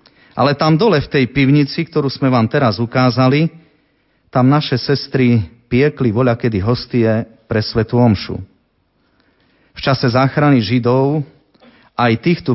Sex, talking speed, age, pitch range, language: male, 125 wpm, 40-59, 115-140 Hz, Slovak